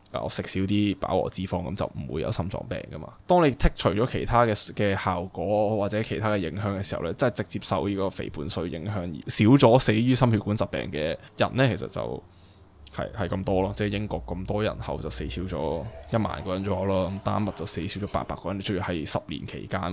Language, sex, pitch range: Chinese, male, 95-115 Hz